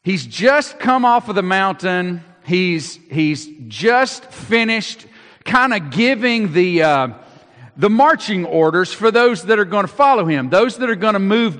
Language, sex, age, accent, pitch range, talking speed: English, male, 50-69, American, 190-260 Hz, 170 wpm